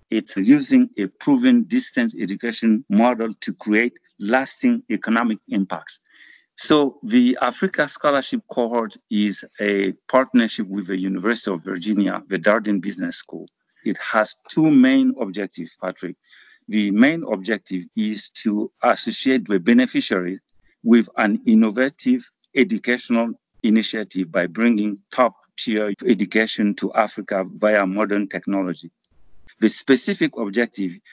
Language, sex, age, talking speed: English, male, 50-69, 115 wpm